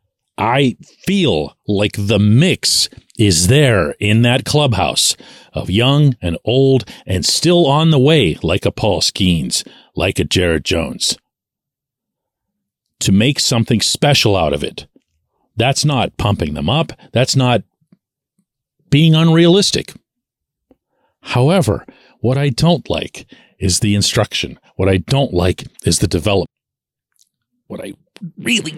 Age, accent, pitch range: 40-59, American, 105-175 Hz